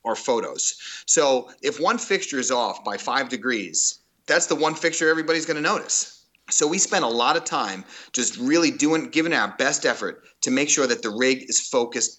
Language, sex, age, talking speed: English, male, 30-49, 200 wpm